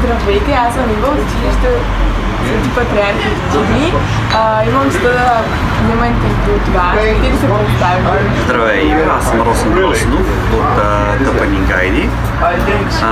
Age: 20-39